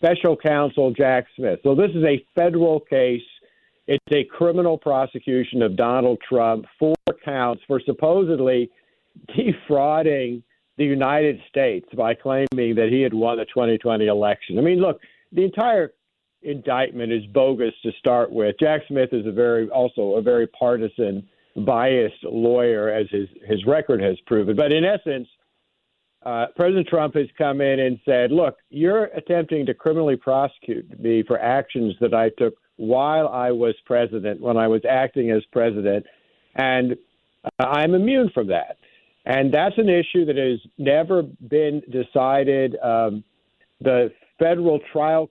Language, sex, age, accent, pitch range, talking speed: English, male, 60-79, American, 115-150 Hz, 150 wpm